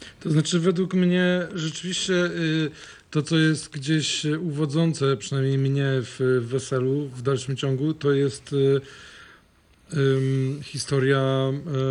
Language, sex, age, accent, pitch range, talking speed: Polish, male, 40-59, native, 135-150 Hz, 105 wpm